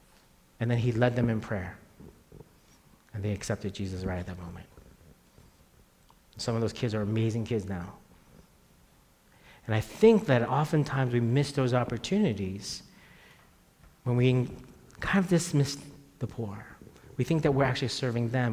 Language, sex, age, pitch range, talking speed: English, male, 40-59, 105-130 Hz, 150 wpm